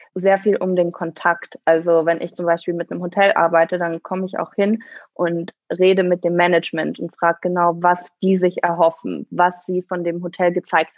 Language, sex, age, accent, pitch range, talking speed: German, female, 20-39, German, 175-205 Hz, 200 wpm